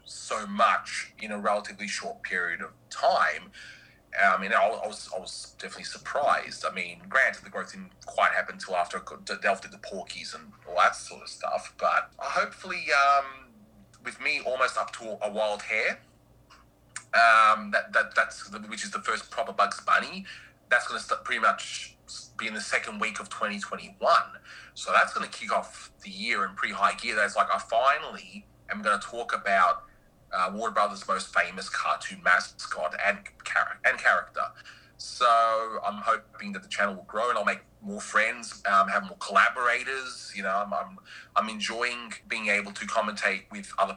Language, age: English, 30-49